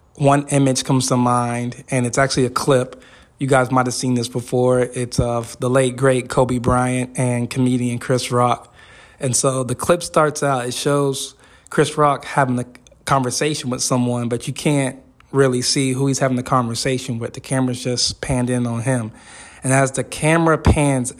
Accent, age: American, 20-39